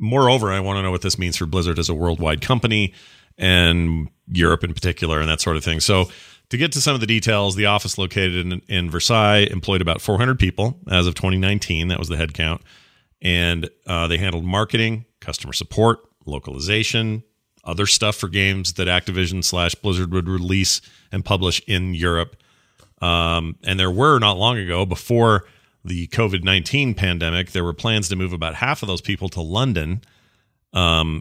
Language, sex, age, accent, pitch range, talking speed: English, male, 40-59, American, 90-110 Hz, 180 wpm